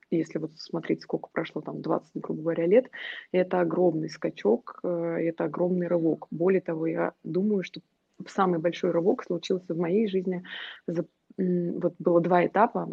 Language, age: Russian, 20-39